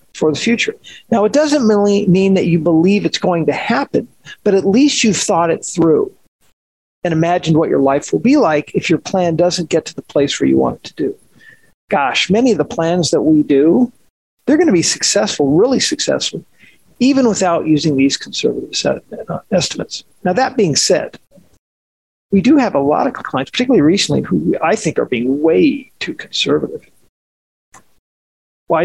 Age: 50-69